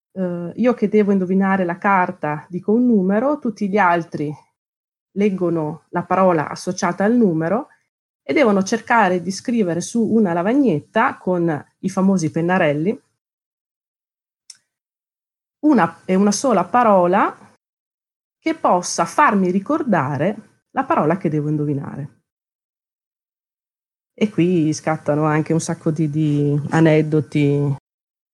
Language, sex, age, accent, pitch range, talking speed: Italian, female, 30-49, native, 160-195 Hz, 110 wpm